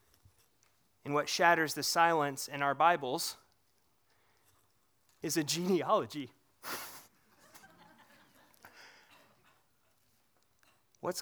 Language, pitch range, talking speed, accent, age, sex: English, 130-165 Hz, 65 wpm, American, 30-49, male